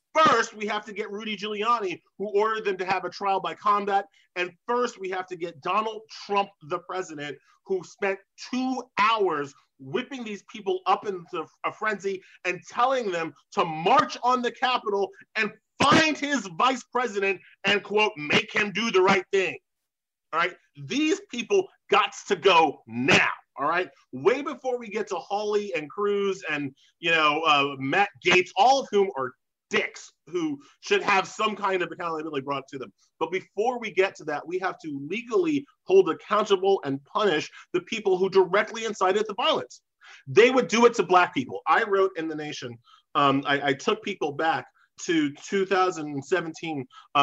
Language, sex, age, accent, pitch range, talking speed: English, male, 30-49, American, 175-245 Hz, 175 wpm